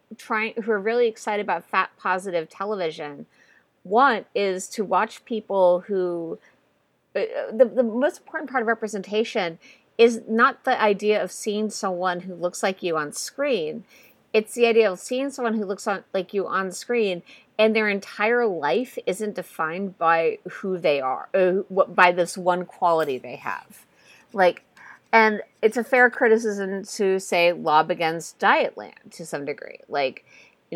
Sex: female